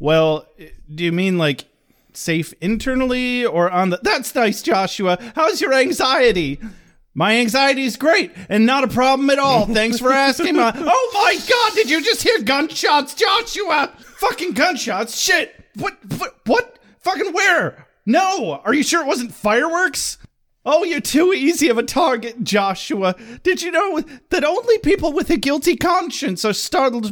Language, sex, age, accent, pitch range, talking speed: English, male, 30-49, American, 200-335 Hz, 165 wpm